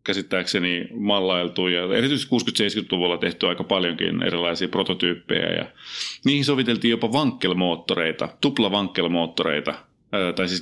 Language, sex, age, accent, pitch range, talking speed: Finnish, male, 30-49, native, 90-115 Hz, 115 wpm